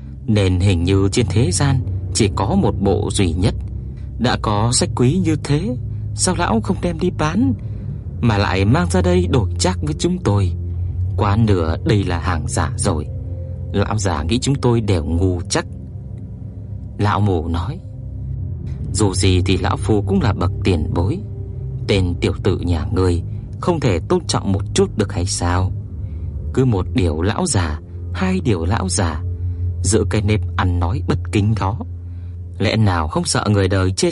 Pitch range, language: 90-105 Hz, Vietnamese